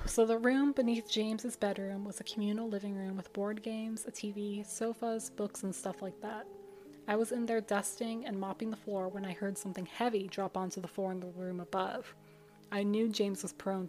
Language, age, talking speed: English, 20-39, 210 wpm